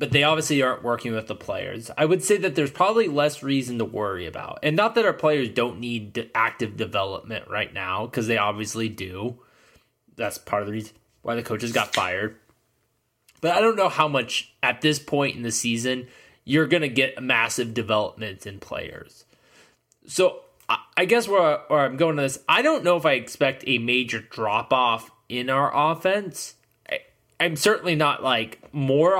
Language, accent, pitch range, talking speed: English, American, 110-150 Hz, 185 wpm